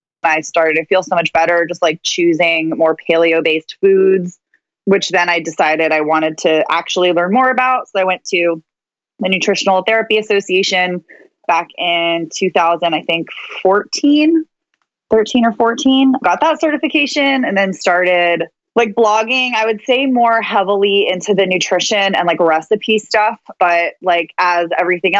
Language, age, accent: English, 20-39, American